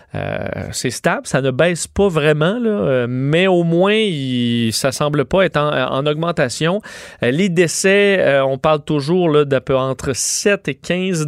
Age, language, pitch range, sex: 30-49, French, 140-185 Hz, male